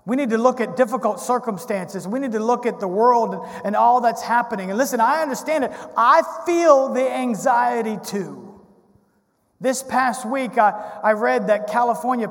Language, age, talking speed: English, 40-59, 175 wpm